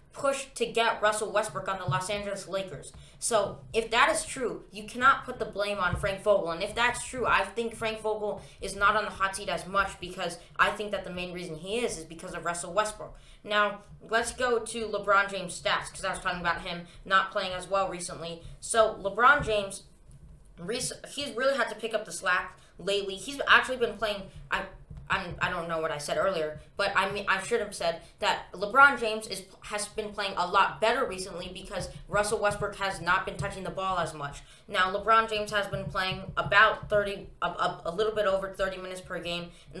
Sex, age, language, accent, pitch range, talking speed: female, 20-39, English, American, 175-210 Hz, 215 wpm